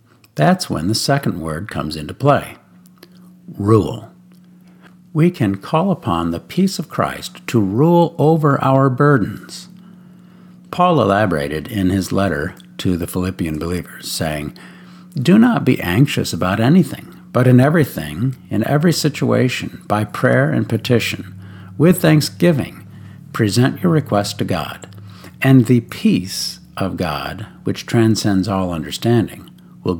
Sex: male